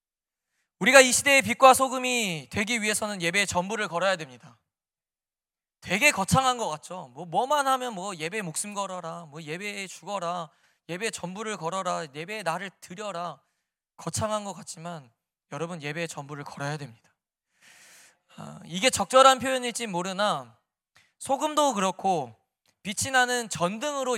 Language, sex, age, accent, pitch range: Korean, male, 20-39, native, 180-250 Hz